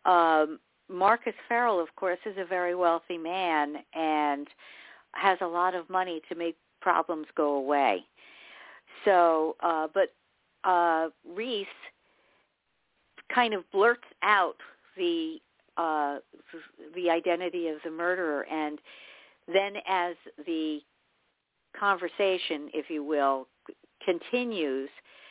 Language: English